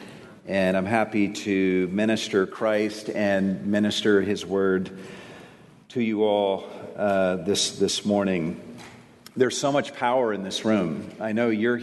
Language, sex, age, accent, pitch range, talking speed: English, male, 50-69, American, 100-115 Hz, 135 wpm